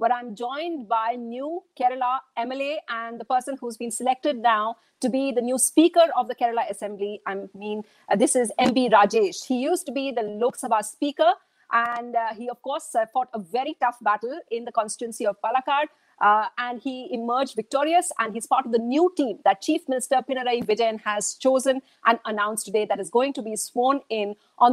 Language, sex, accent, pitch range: English, female, Indian, 225-285 Hz